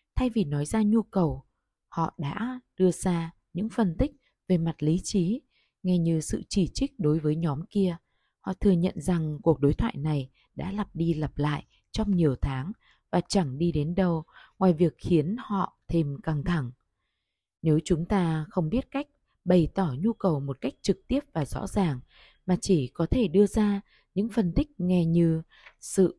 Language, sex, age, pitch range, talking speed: Vietnamese, female, 20-39, 150-200 Hz, 190 wpm